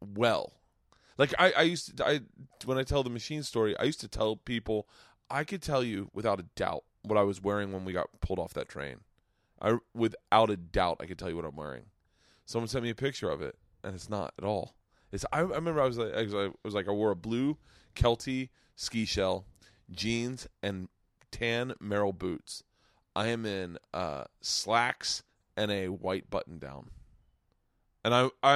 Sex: male